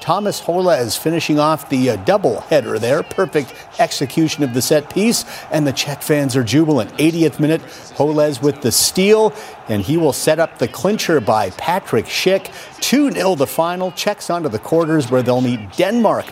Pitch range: 130-160 Hz